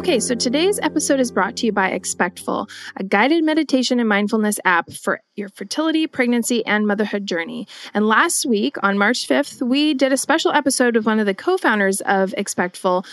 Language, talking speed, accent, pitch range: English, 185 wpm, American, 200-255 Hz